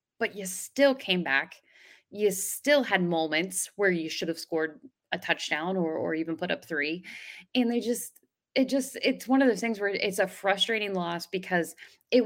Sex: female